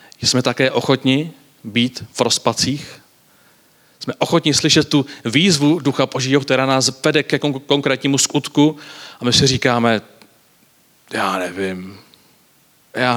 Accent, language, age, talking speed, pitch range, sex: native, Czech, 40-59, 120 wpm, 115-140 Hz, male